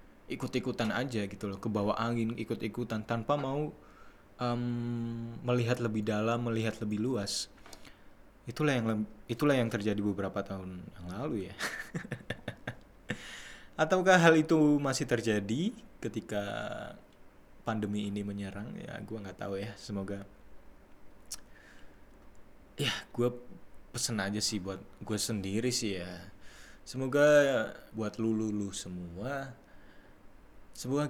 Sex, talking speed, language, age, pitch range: male, 115 wpm, Indonesian, 20-39, 100-125 Hz